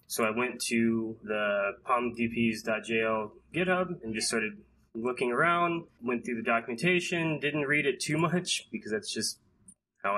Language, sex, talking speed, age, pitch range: English, male, 145 wpm, 20-39, 115-150 Hz